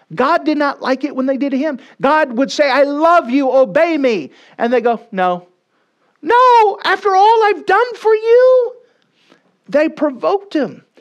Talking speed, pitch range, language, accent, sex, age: 175 wpm, 195-280 Hz, English, American, male, 50-69